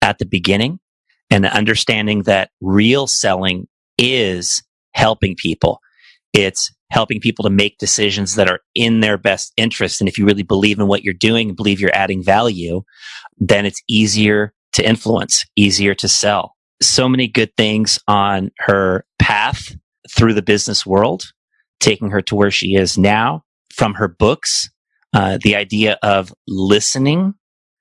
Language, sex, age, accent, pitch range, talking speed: English, male, 30-49, American, 100-115 Hz, 155 wpm